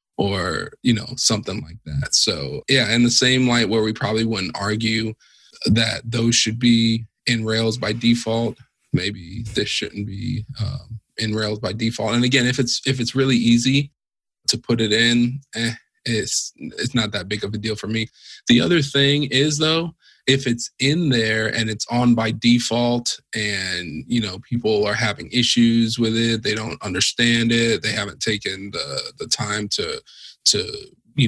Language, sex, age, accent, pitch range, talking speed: English, male, 20-39, American, 110-125 Hz, 180 wpm